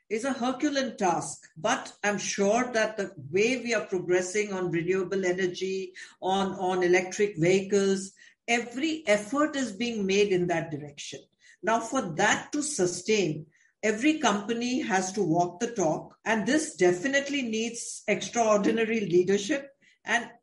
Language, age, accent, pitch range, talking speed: English, 60-79, Indian, 190-240 Hz, 140 wpm